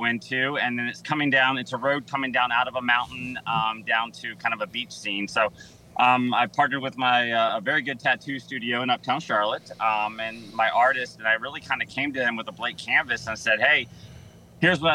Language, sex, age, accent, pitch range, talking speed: English, male, 30-49, American, 110-135 Hz, 235 wpm